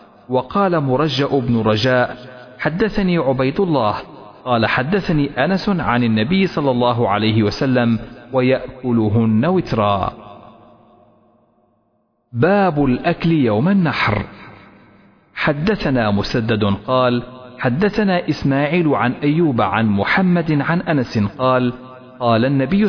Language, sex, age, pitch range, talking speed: Arabic, male, 40-59, 115-155 Hz, 95 wpm